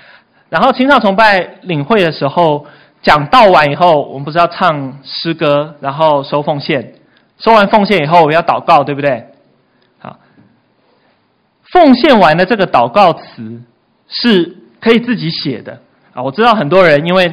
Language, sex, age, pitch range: Chinese, male, 20-39, 135-185 Hz